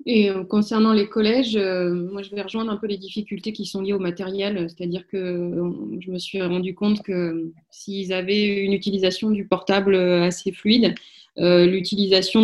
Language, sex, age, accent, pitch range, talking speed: French, female, 20-39, French, 180-210 Hz, 165 wpm